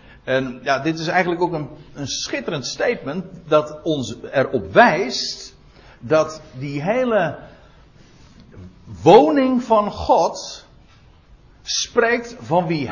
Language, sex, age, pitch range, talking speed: Dutch, male, 60-79, 125-185 Hz, 105 wpm